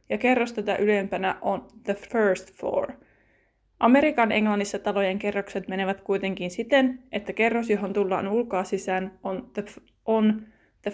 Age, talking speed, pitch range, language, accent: 20-39, 130 wpm, 205-240 Hz, Finnish, native